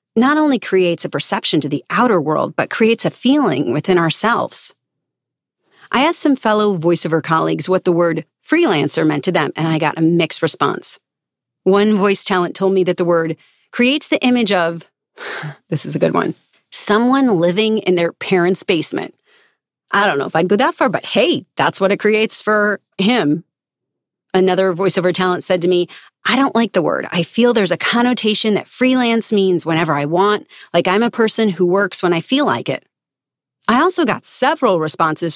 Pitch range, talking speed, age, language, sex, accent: 170-225 Hz, 190 wpm, 40-59, English, female, American